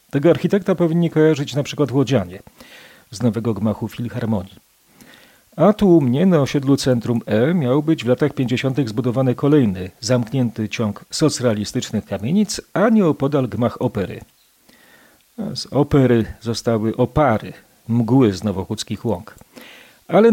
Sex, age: male, 40-59